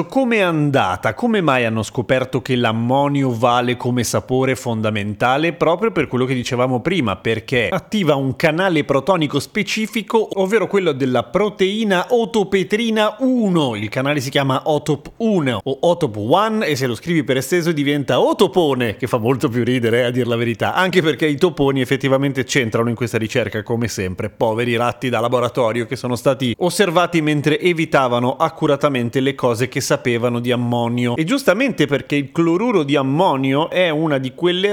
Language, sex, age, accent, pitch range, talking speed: Italian, male, 30-49, native, 125-165 Hz, 165 wpm